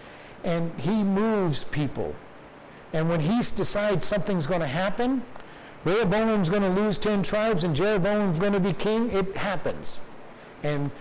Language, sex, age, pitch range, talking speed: English, male, 60-79, 160-210 Hz, 145 wpm